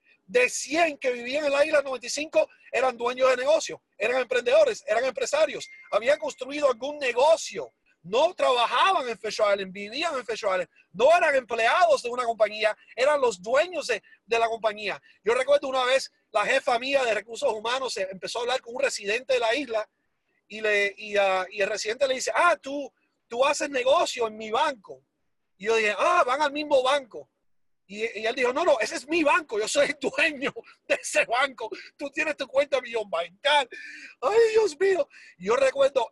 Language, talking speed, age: Spanish, 185 wpm, 40-59